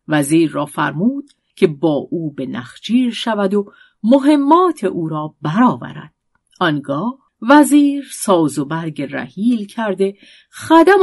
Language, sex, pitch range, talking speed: Persian, female, 155-250 Hz, 120 wpm